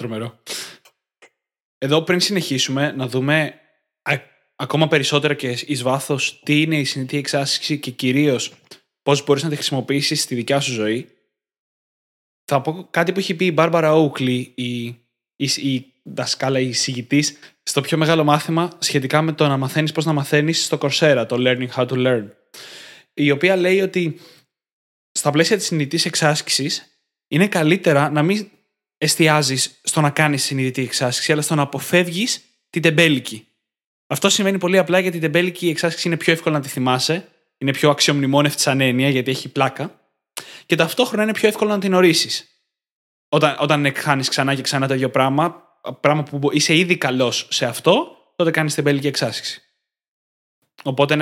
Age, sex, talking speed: 20-39, male, 160 wpm